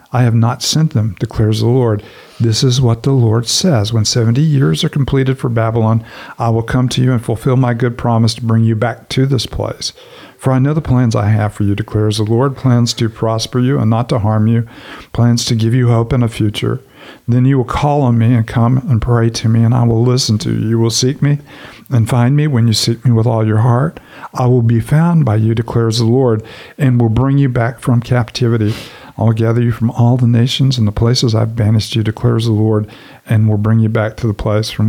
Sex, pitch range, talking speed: male, 110-125 Hz, 245 wpm